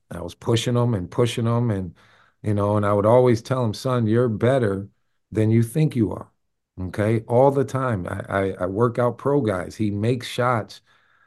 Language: English